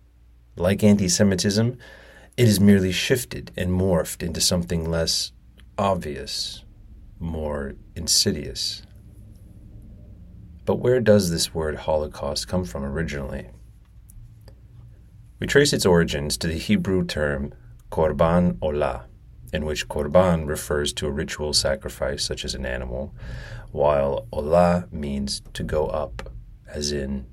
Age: 30-49